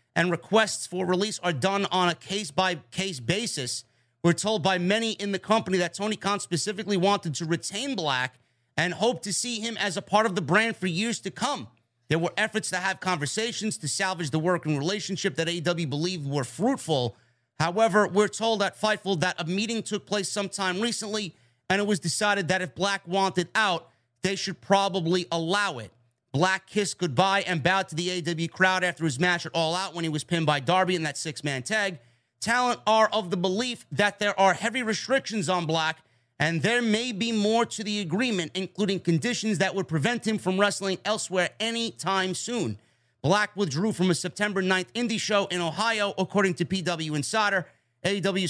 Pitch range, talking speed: 165-205 Hz, 190 wpm